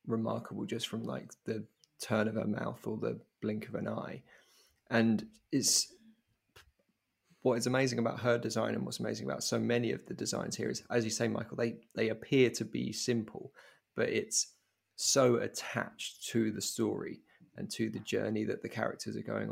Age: 20-39